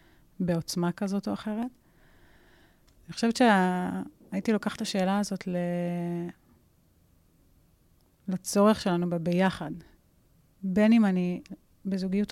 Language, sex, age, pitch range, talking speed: Hebrew, female, 30-49, 180-200 Hz, 90 wpm